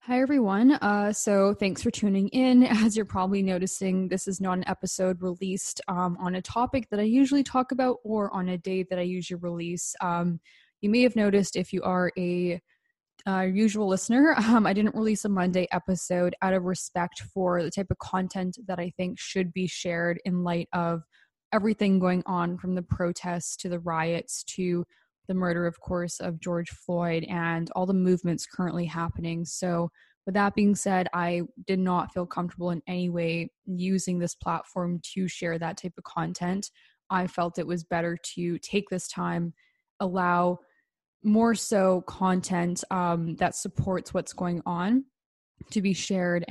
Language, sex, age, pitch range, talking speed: English, female, 10-29, 175-195 Hz, 180 wpm